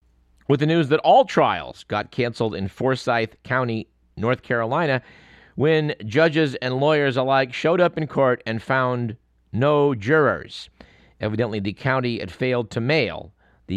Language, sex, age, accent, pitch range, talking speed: English, male, 50-69, American, 100-130 Hz, 150 wpm